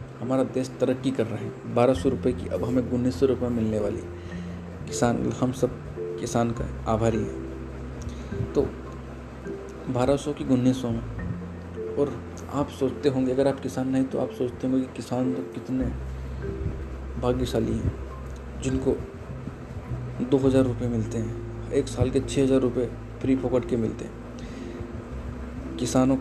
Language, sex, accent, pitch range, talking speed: Hindi, male, native, 105-125 Hz, 140 wpm